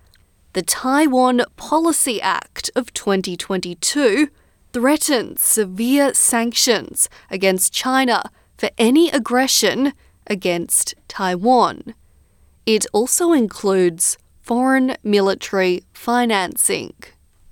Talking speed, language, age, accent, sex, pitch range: 75 wpm, English, 20-39, Australian, female, 190-260 Hz